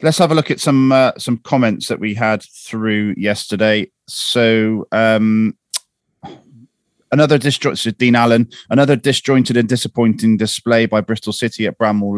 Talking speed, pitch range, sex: 150 wpm, 100-120 Hz, male